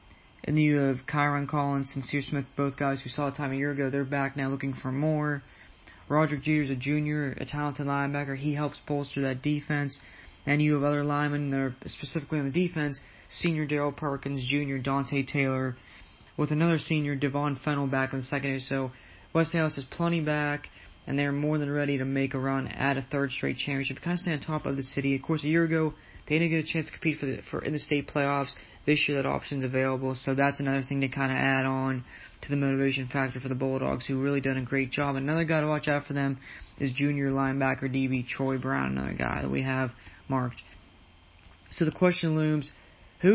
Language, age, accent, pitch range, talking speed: English, 20-39, American, 135-150 Hz, 220 wpm